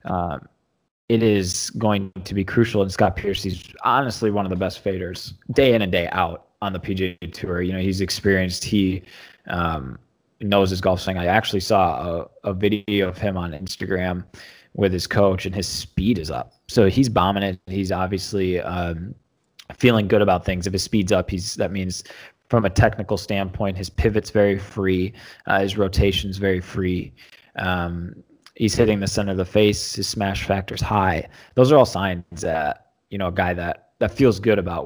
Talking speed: 195 wpm